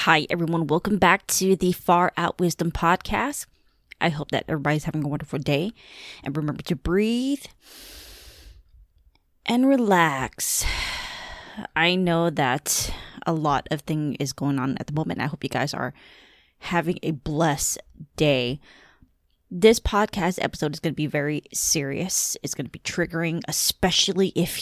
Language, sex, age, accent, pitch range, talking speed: English, female, 20-39, American, 145-180 Hz, 150 wpm